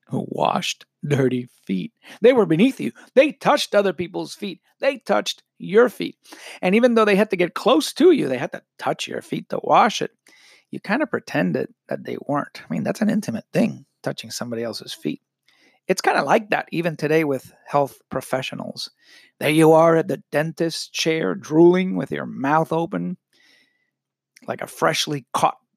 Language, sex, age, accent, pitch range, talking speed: English, male, 50-69, American, 130-205 Hz, 185 wpm